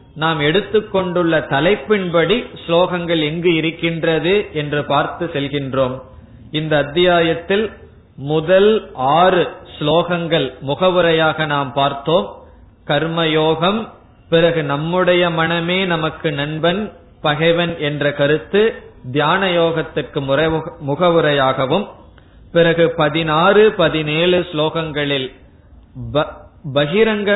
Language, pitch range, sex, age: Tamil, 140-180 Hz, male, 20-39